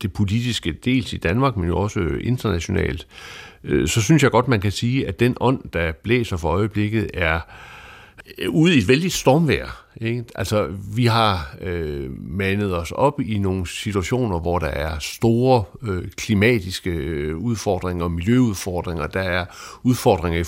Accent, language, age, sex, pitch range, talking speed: native, Danish, 60-79, male, 85-110 Hz, 150 wpm